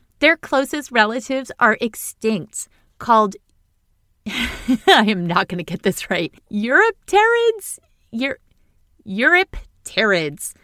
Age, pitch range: 30-49, 200-285 Hz